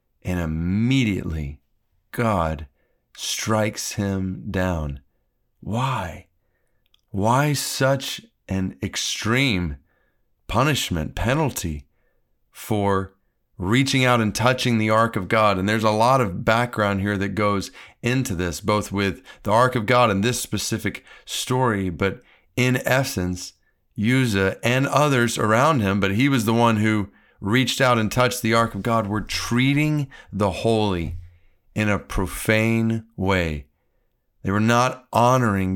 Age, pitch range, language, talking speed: 40-59, 95-125 Hz, English, 130 wpm